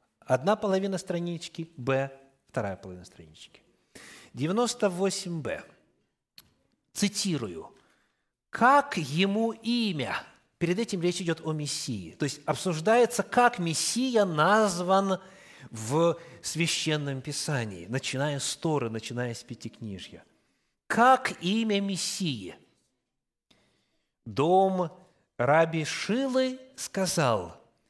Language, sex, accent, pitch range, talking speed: Russian, male, native, 135-190 Hz, 90 wpm